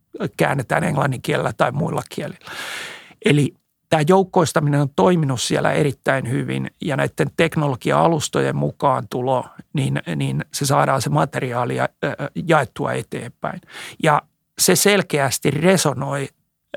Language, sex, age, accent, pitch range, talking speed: Finnish, male, 60-79, native, 135-165 Hz, 110 wpm